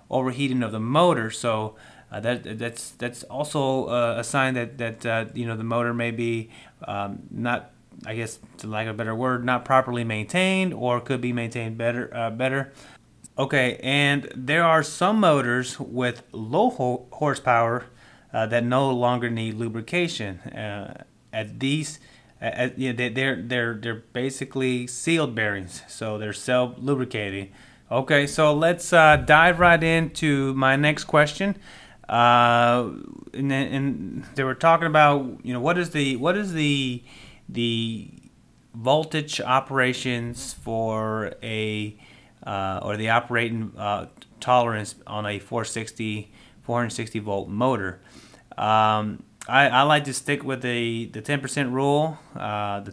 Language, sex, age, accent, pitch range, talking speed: English, male, 30-49, American, 115-135 Hz, 145 wpm